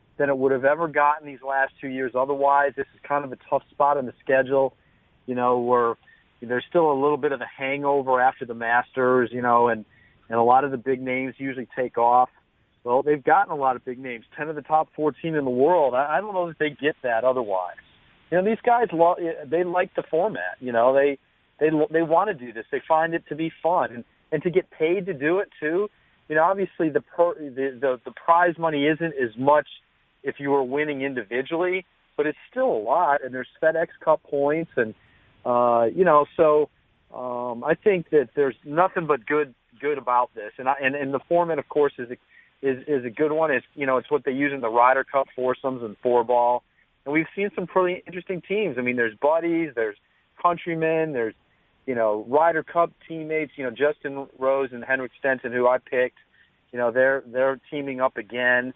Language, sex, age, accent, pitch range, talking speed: English, male, 40-59, American, 125-160 Hz, 220 wpm